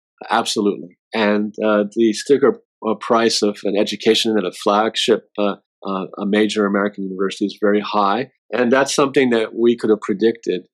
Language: English